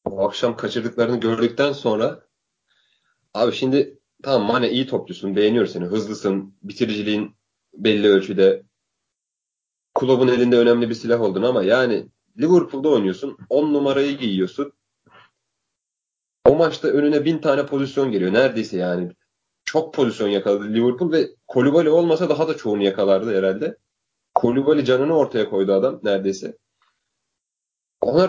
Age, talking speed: 30-49, 125 wpm